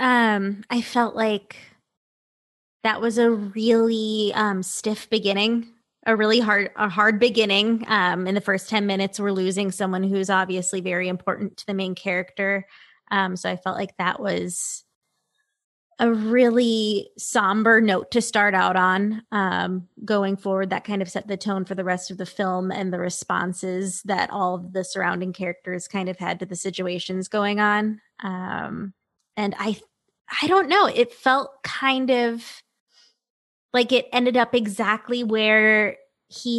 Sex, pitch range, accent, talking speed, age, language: female, 195-235 Hz, American, 160 wpm, 20-39, English